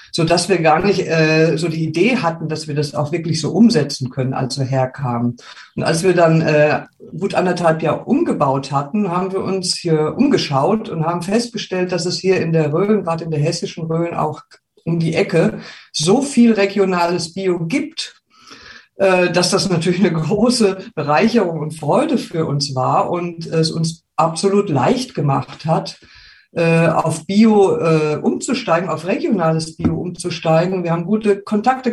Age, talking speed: 50-69, 165 wpm